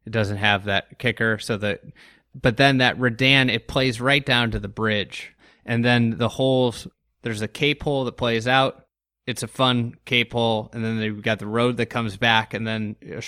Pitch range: 110-135 Hz